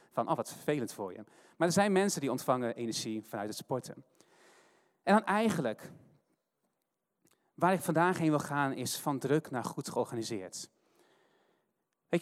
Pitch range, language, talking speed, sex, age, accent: 140-190 Hz, Dutch, 155 wpm, male, 30-49, Dutch